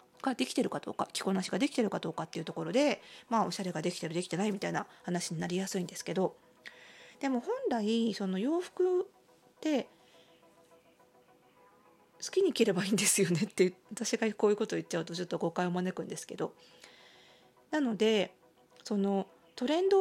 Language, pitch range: Japanese, 180-275 Hz